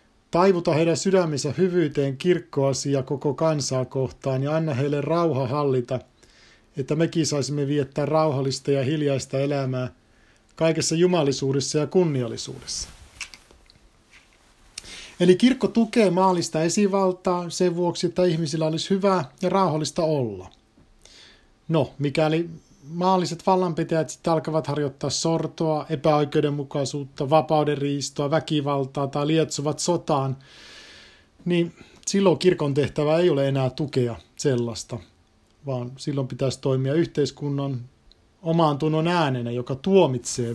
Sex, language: male, Finnish